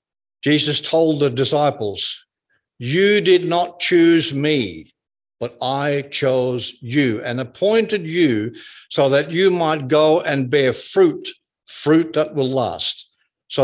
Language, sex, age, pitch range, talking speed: English, male, 60-79, 120-165 Hz, 130 wpm